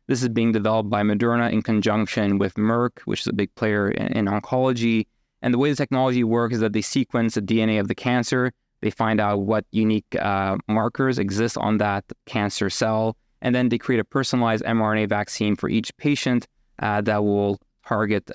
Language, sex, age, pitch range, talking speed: English, male, 20-39, 110-125 Hz, 195 wpm